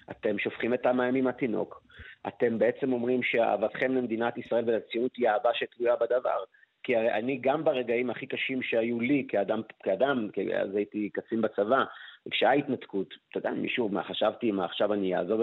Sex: male